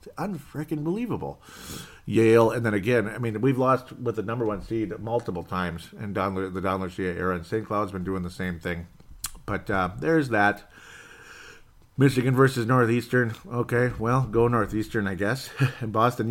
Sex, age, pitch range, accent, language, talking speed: male, 50-69, 95-125 Hz, American, English, 160 wpm